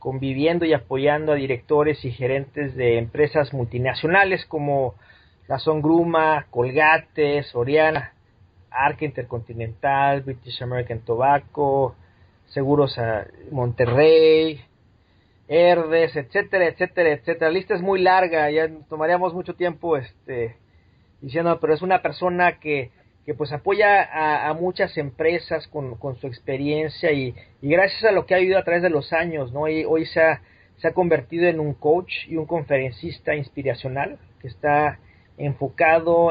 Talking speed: 140 wpm